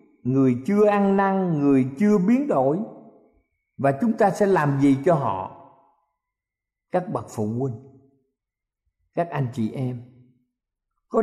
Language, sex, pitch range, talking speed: Vietnamese, male, 130-200 Hz, 135 wpm